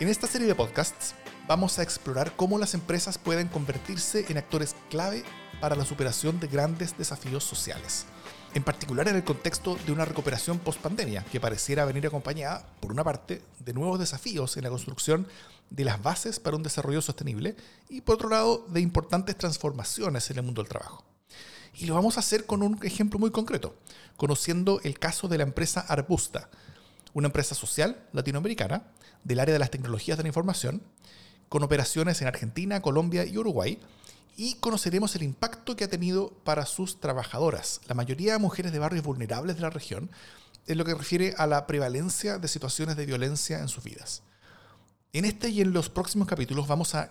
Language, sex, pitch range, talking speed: Spanish, male, 140-185 Hz, 180 wpm